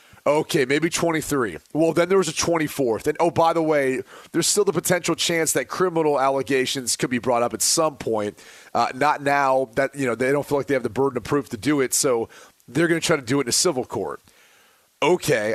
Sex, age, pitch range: male, 30-49, 135-170 Hz